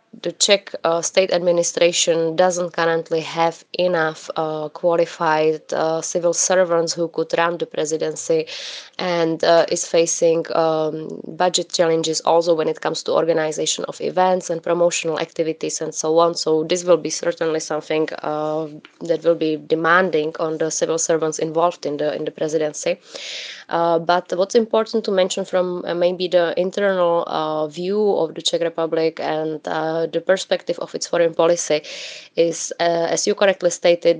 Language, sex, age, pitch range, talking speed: English, female, 20-39, 160-175 Hz, 160 wpm